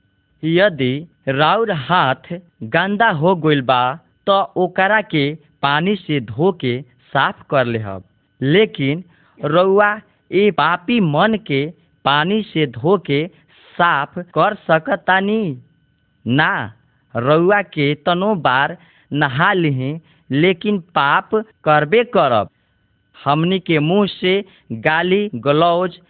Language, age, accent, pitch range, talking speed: Hindi, 50-69, native, 145-190 Hz, 95 wpm